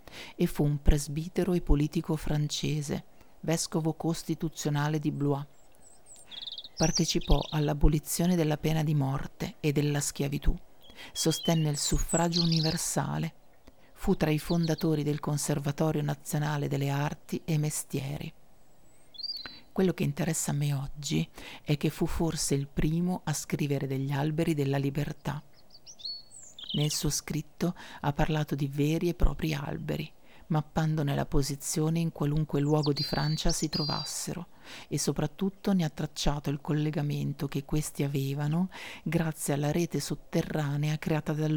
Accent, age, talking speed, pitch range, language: native, 40-59, 130 wpm, 145-165 Hz, Italian